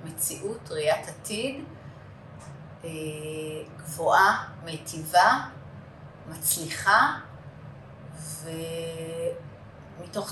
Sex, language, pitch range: female, Hebrew, 150-190 Hz